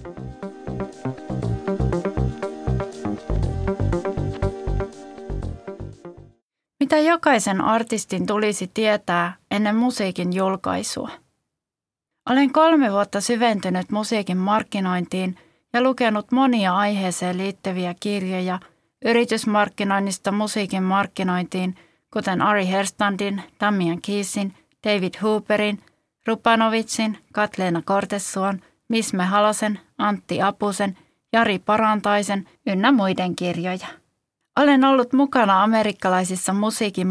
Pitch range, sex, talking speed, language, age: 180-215 Hz, female, 75 wpm, Finnish, 30-49